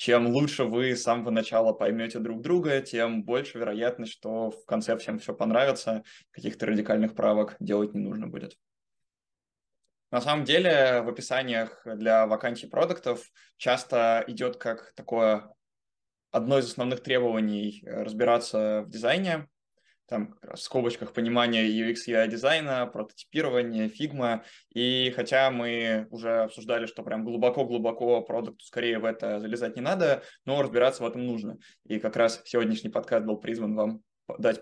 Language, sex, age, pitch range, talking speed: Russian, male, 20-39, 110-130 Hz, 140 wpm